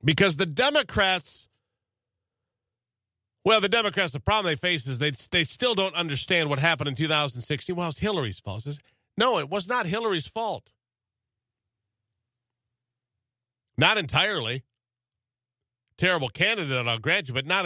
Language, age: English, 50-69